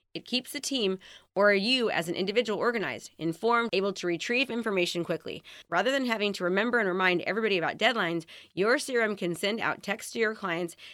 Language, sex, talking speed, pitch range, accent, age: English, female, 190 wpm, 170-230 Hz, American, 30-49